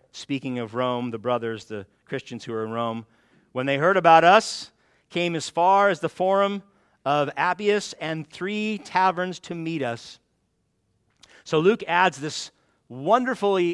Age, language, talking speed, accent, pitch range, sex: 40-59, English, 155 wpm, American, 145-190 Hz, male